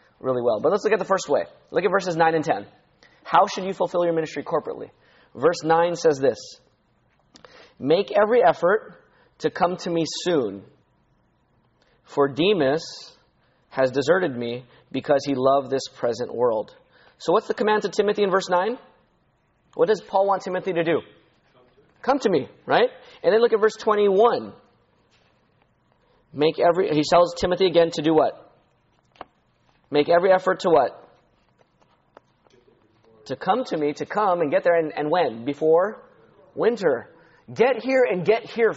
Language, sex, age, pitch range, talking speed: English, male, 30-49, 150-210 Hz, 160 wpm